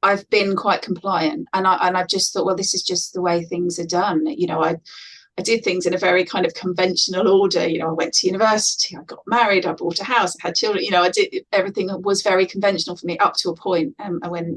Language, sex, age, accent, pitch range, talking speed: English, female, 30-49, British, 185-220 Hz, 270 wpm